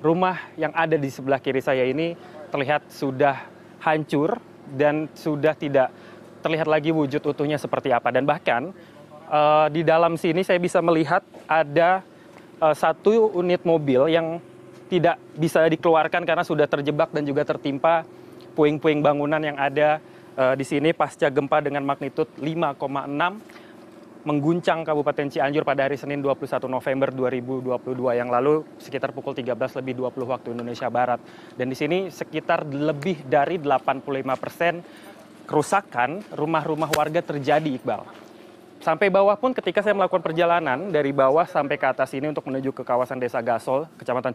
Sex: male